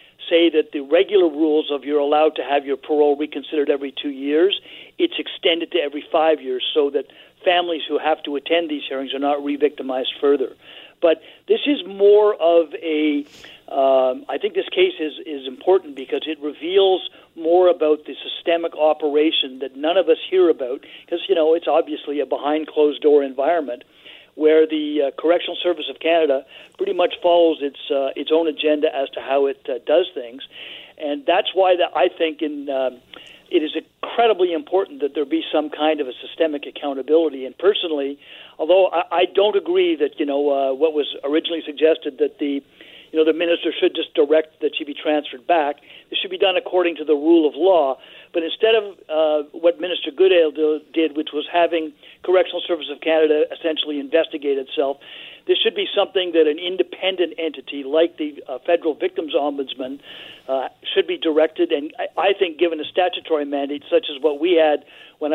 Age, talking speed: 50-69, 185 wpm